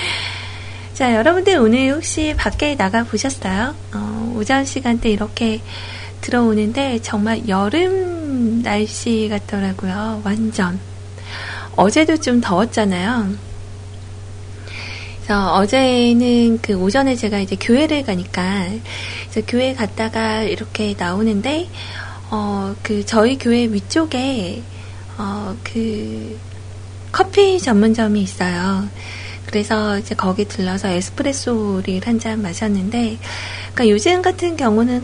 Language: Korean